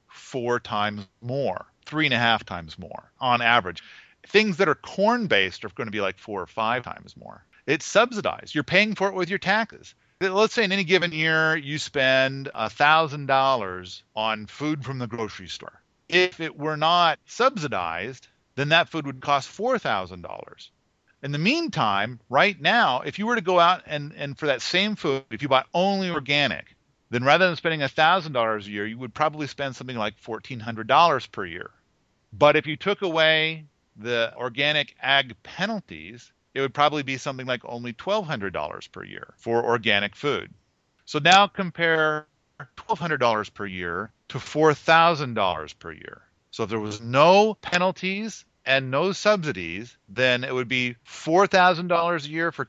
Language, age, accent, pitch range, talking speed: English, 40-59, American, 120-175 Hz, 170 wpm